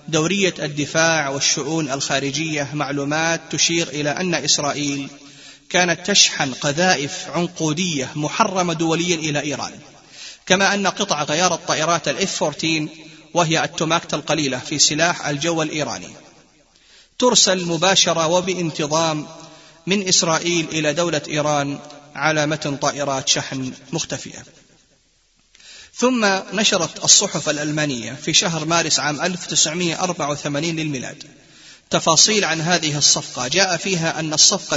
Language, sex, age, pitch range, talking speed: Arabic, male, 30-49, 150-175 Hz, 105 wpm